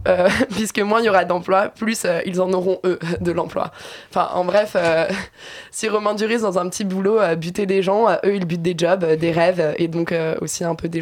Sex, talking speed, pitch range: female, 250 wpm, 170-195 Hz